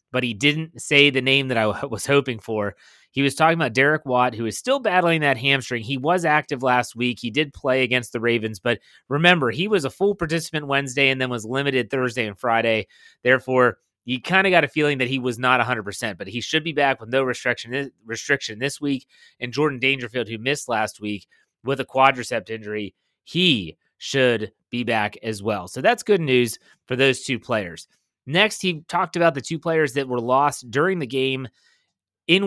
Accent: American